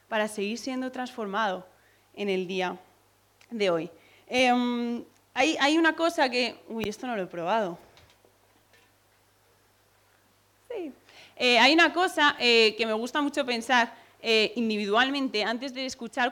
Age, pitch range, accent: 20-39, 205-275 Hz, Spanish